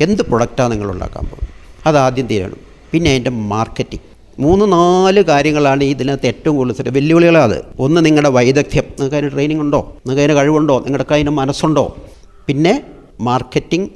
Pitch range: 120-150 Hz